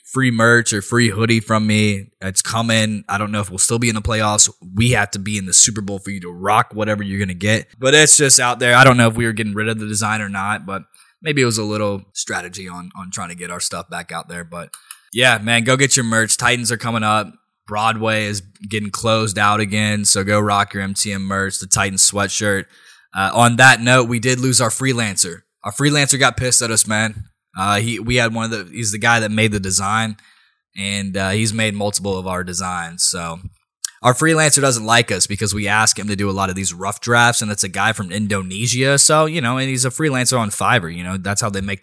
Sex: male